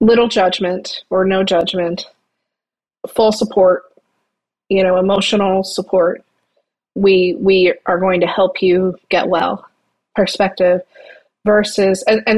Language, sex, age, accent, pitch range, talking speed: English, female, 30-49, American, 180-210 Hz, 115 wpm